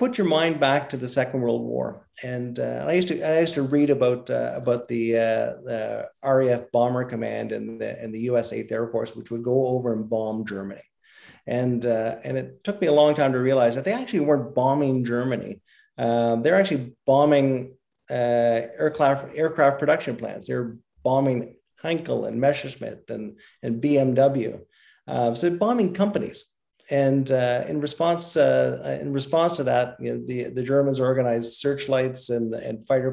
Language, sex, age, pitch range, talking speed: English, male, 40-59, 120-145 Hz, 180 wpm